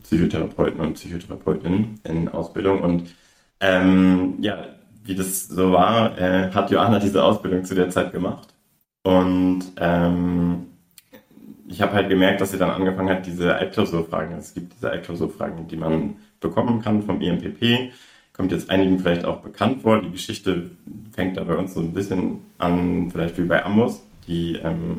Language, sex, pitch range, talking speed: German, male, 85-95 Hz, 165 wpm